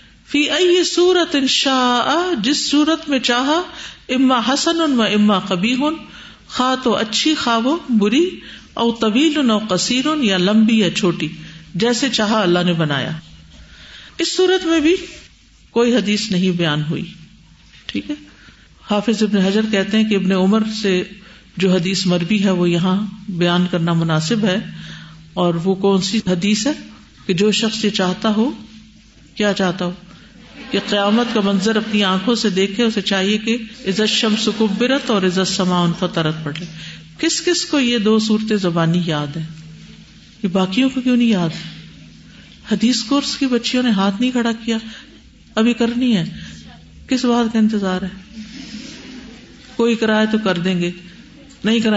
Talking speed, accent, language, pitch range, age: 150 wpm, Indian, English, 185-255 Hz, 50-69